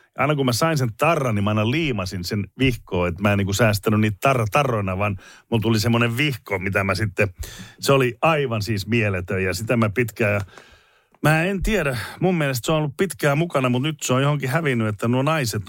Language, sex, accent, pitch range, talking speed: Finnish, male, native, 110-145 Hz, 210 wpm